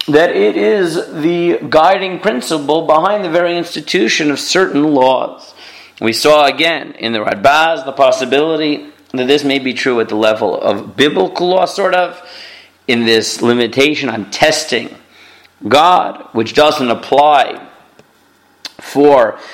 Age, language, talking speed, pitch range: 40-59, English, 135 wpm, 115-150 Hz